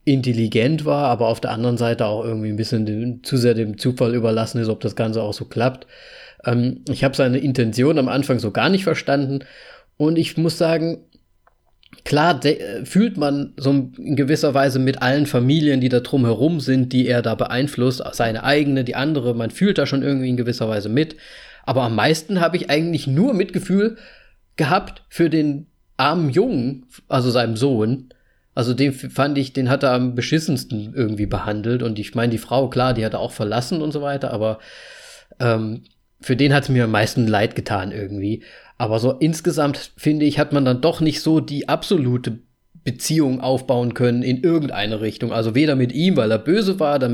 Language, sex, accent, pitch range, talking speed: German, male, German, 115-150 Hz, 190 wpm